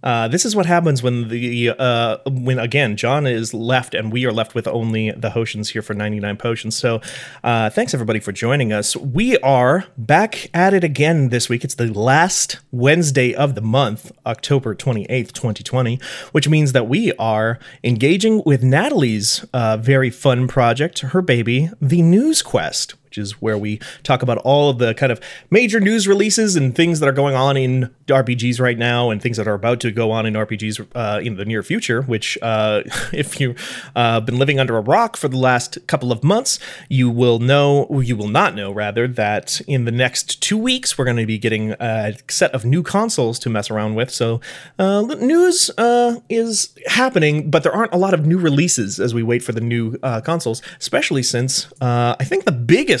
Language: English